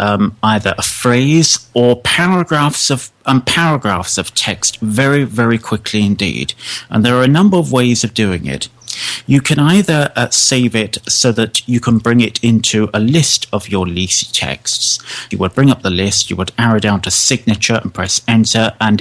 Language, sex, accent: English, male, British